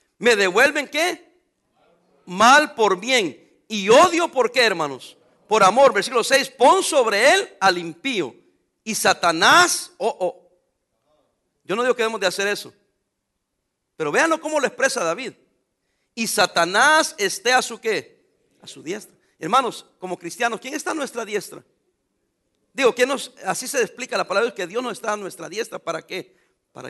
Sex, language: male, English